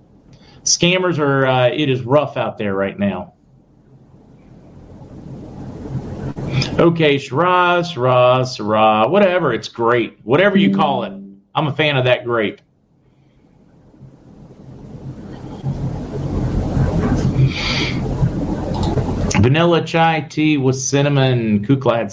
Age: 40-59